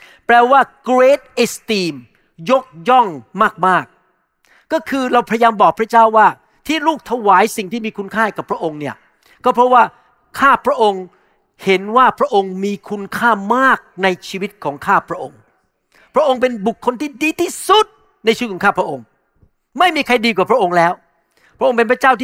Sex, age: male, 60-79